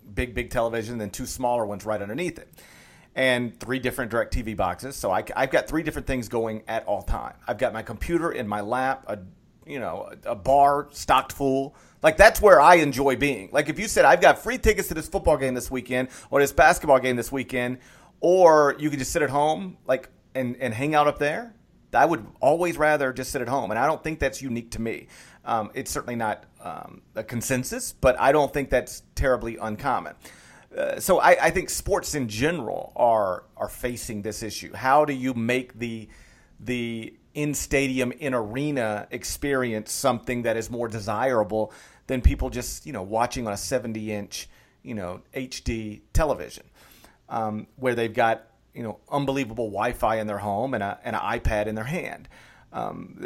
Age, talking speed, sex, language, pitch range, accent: 40-59, 195 wpm, male, English, 115-140 Hz, American